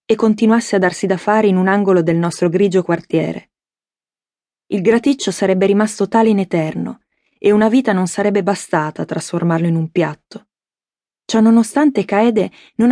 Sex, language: female, Italian